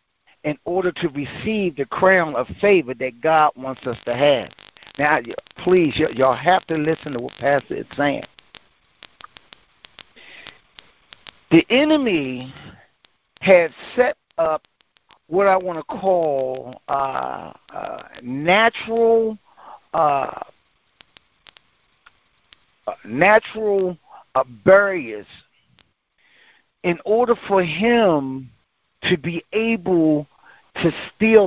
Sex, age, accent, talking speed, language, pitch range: male, 50-69, American, 95 wpm, English, 145-190 Hz